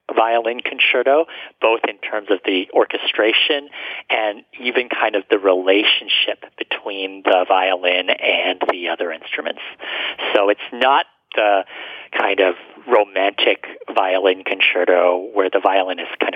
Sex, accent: male, American